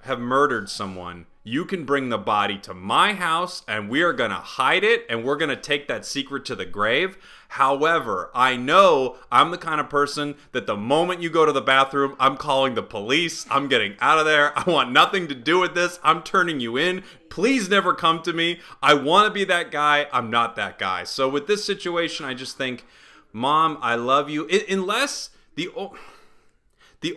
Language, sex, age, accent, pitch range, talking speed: English, male, 30-49, American, 115-170 Hz, 200 wpm